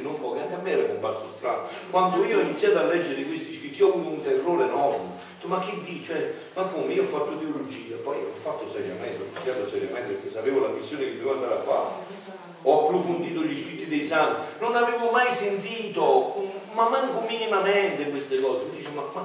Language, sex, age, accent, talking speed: Italian, male, 40-59, native, 185 wpm